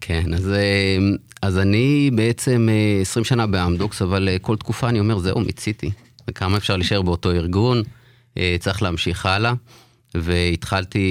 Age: 30-49